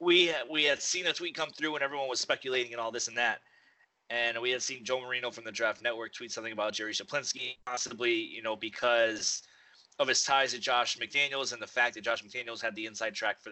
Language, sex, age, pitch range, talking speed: English, male, 20-39, 115-135 Hz, 235 wpm